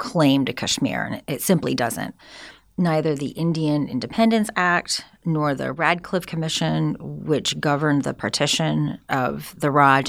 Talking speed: 135 wpm